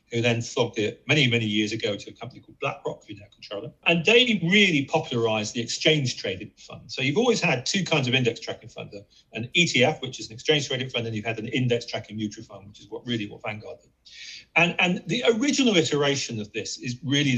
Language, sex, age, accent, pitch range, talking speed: English, male, 40-59, British, 115-160 Hz, 220 wpm